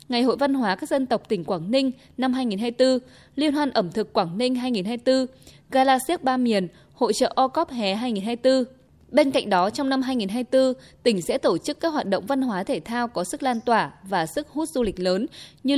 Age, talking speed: 20-39, 210 wpm